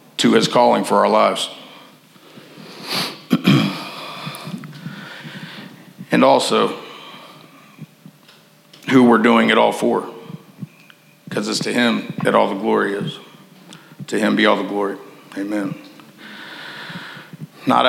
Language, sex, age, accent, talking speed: English, male, 50-69, American, 105 wpm